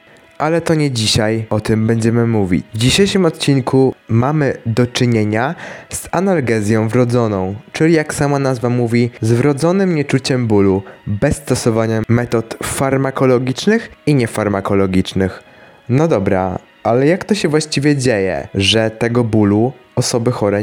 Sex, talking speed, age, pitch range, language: male, 130 wpm, 20-39, 115-145 Hz, Polish